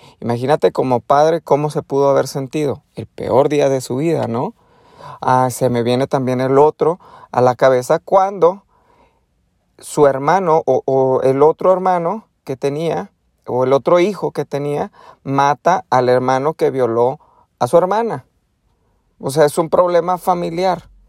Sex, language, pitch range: male, Spanish, 135-180 Hz